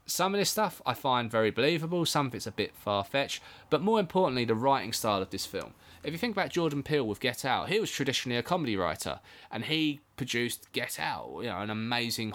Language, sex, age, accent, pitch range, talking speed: English, male, 20-39, British, 110-140 Hz, 230 wpm